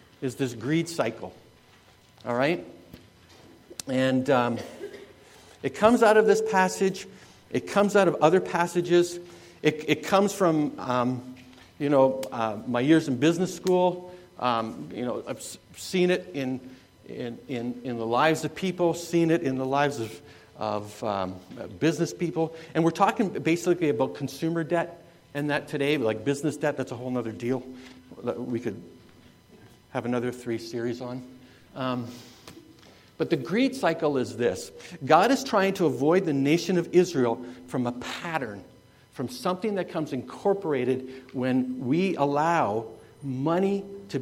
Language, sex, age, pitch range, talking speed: English, male, 60-79, 125-175 Hz, 150 wpm